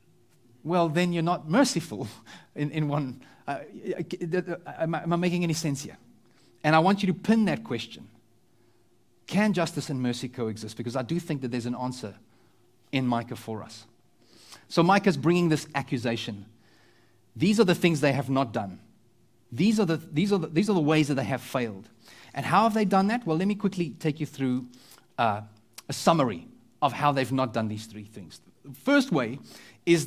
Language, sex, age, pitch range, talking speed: English, male, 30-49, 120-160 Hz, 190 wpm